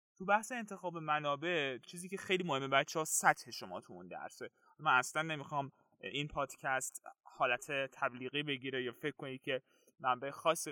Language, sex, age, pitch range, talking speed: Persian, male, 20-39, 130-185 Hz, 160 wpm